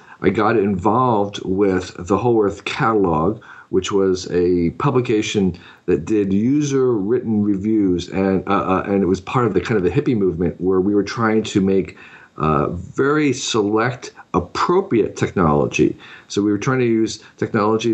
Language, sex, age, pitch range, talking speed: English, male, 40-59, 95-120 Hz, 165 wpm